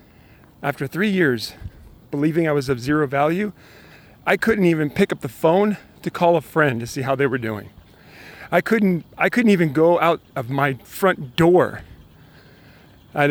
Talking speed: 170 wpm